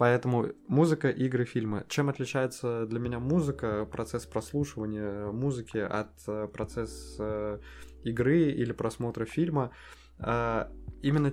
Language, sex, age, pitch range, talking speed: Russian, male, 20-39, 105-125 Hz, 100 wpm